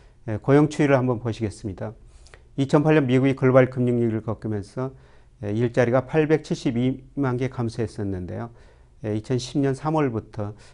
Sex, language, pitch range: male, Korean, 110-130 Hz